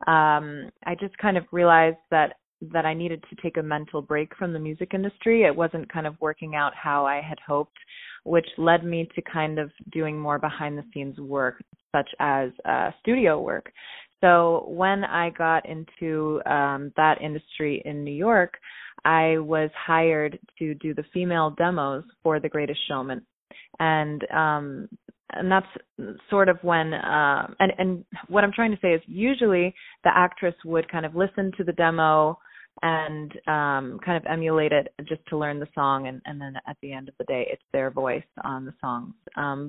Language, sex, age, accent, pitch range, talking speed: English, female, 20-39, American, 150-170 Hz, 185 wpm